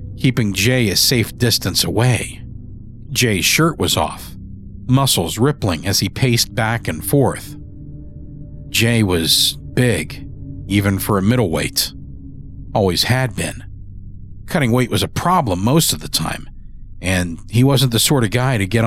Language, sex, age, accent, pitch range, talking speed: English, male, 50-69, American, 95-150 Hz, 145 wpm